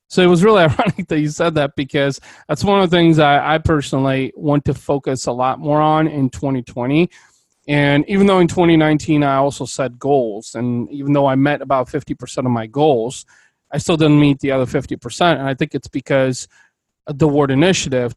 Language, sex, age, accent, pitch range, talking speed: English, male, 30-49, American, 135-160 Hz, 200 wpm